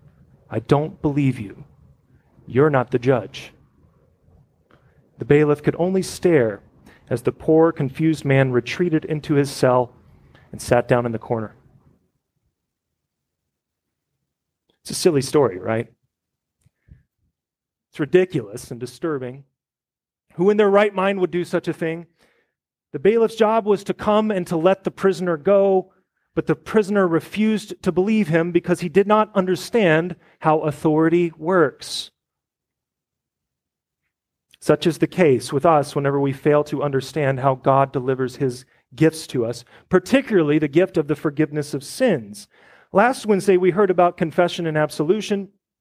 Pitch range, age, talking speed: 140-185 Hz, 30-49, 140 wpm